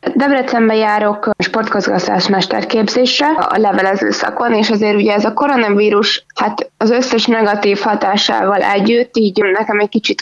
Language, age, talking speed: Hungarian, 20-39, 130 wpm